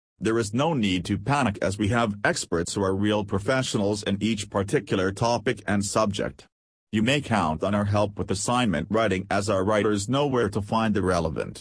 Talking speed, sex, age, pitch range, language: 195 wpm, male, 40-59, 95-115 Hz, English